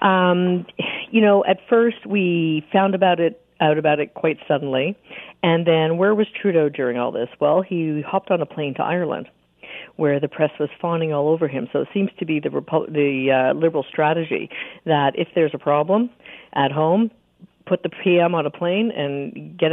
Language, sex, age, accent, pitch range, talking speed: English, female, 50-69, American, 150-210 Hz, 195 wpm